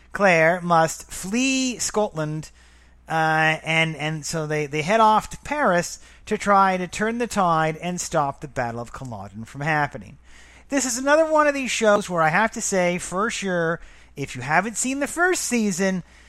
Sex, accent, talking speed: male, American, 180 wpm